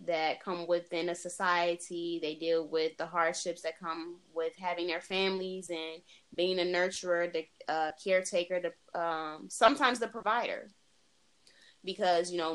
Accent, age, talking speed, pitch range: American, 20-39, 150 wpm, 170-205 Hz